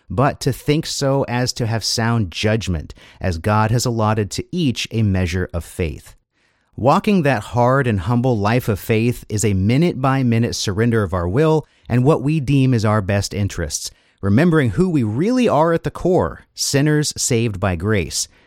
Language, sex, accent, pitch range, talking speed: English, male, American, 100-130 Hz, 175 wpm